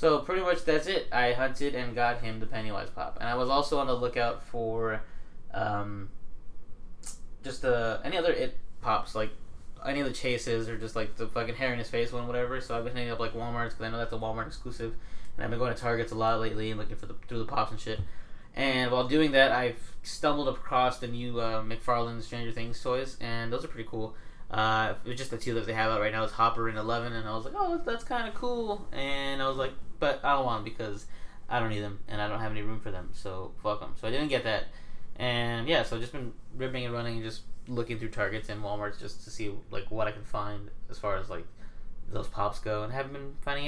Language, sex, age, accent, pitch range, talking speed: English, male, 20-39, American, 110-130 Hz, 260 wpm